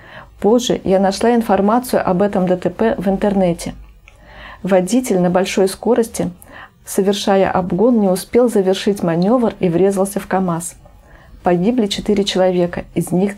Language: Russian